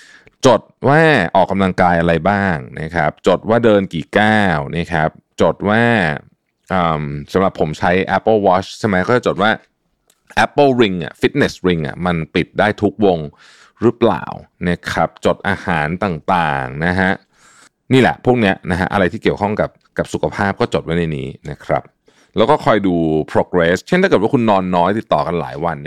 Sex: male